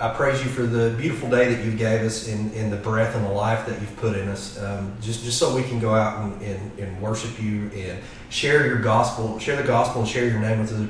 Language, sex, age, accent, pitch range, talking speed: English, male, 30-49, American, 105-120 Hz, 270 wpm